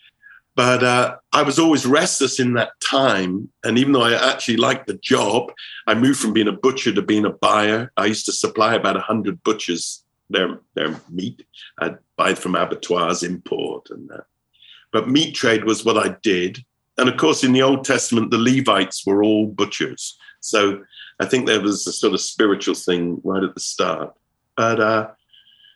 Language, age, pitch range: English, 50-69, 100-130 Hz